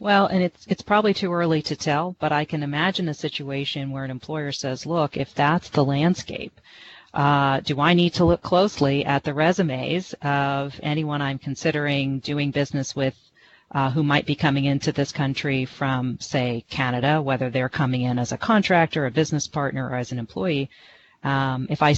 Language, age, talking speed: English, 40-59, 190 wpm